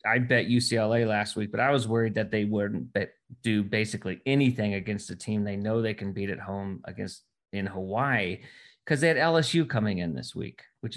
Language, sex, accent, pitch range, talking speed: English, male, American, 105-130 Hz, 210 wpm